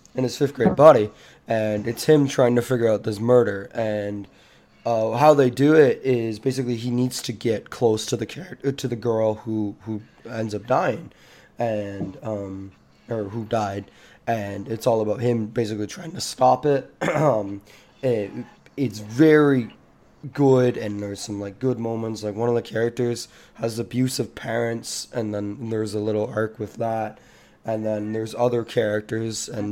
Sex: male